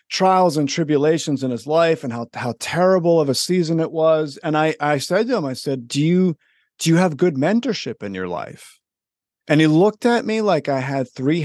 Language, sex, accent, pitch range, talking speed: English, male, American, 130-175 Hz, 220 wpm